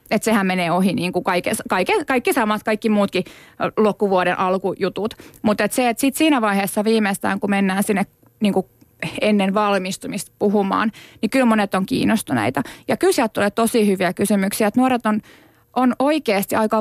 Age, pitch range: 20-39, 195-235 Hz